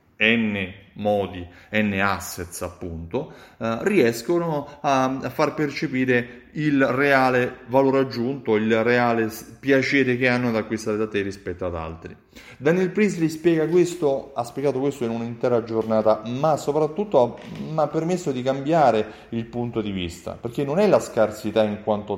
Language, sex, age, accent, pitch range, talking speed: Italian, male, 30-49, native, 105-150 Hz, 150 wpm